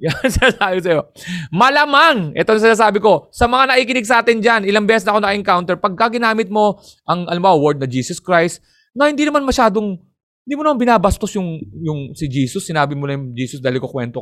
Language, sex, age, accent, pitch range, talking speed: English, male, 20-39, Filipino, 135-205 Hz, 205 wpm